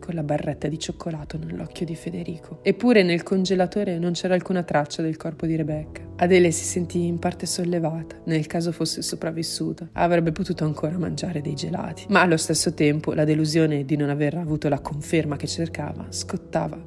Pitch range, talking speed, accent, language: 155-180 Hz, 180 wpm, native, Italian